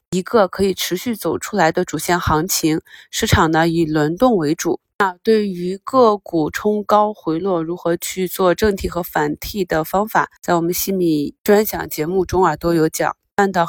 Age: 20-39